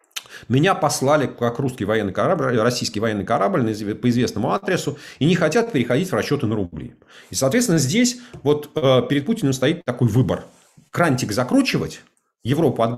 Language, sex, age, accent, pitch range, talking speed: Russian, male, 40-59, native, 100-140 Hz, 155 wpm